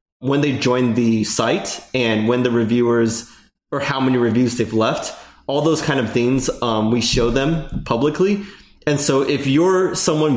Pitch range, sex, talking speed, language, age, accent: 115-140 Hz, male, 175 wpm, English, 20-39, American